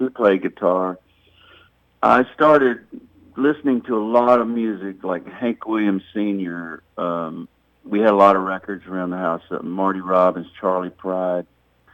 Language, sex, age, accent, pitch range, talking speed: English, male, 60-79, American, 90-110 Hz, 145 wpm